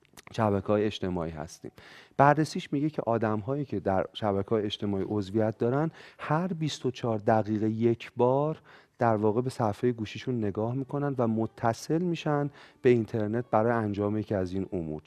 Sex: male